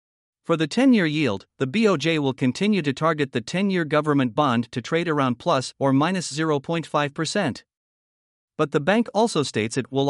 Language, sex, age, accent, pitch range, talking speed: English, male, 50-69, American, 135-175 Hz, 165 wpm